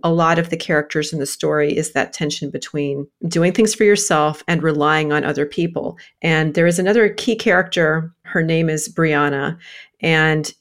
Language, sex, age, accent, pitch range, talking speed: English, female, 40-59, American, 155-200 Hz, 180 wpm